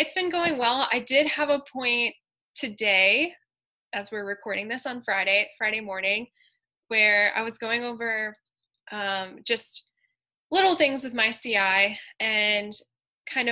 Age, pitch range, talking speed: 10-29, 205-265 Hz, 140 wpm